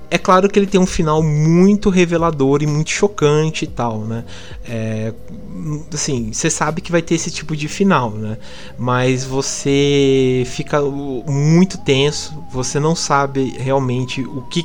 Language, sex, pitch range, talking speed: Portuguese, male, 130-160 Hz, 155 wpm